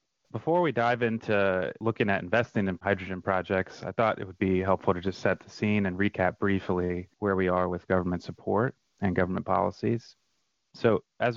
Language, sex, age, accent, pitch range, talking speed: English, male, 30-49, American, 95-110 Hz, 185 wpm